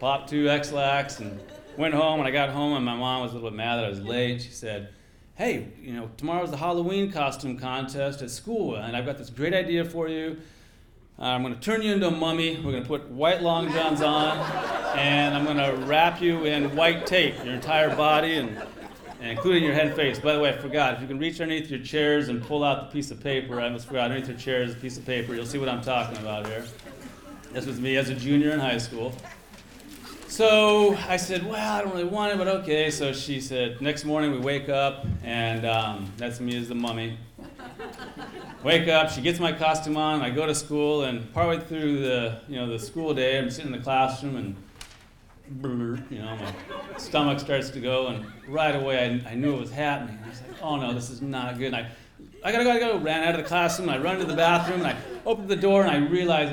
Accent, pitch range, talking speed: American, 125-160 Hz, 240 wpm